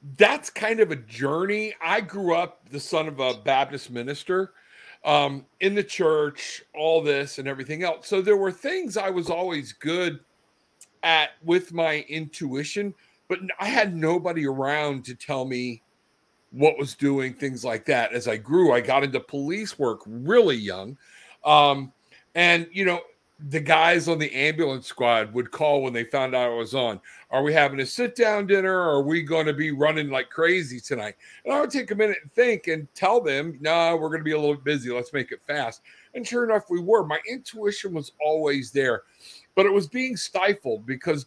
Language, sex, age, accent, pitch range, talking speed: English, male, 50-69, American, 140-185 Hz, 195 wpm